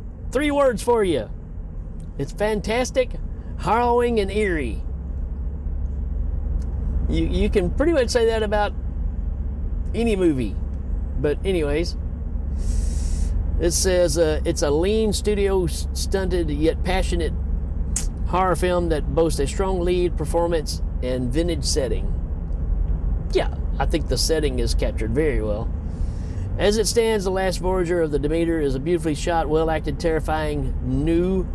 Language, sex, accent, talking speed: English, male, American, 125 wpm